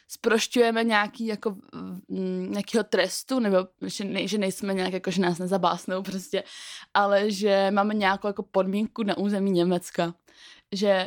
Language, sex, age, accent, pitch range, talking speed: Czech, female, 20-39, native, 195-245 Hz, 140 wpm